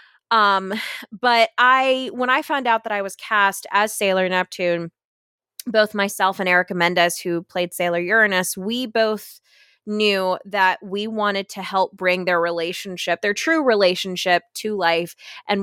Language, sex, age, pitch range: English, female, 20-39, 175-215 Hz